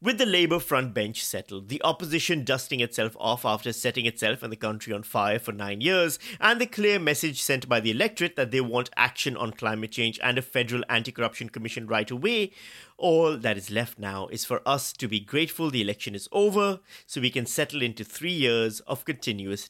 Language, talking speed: English, 210 wpm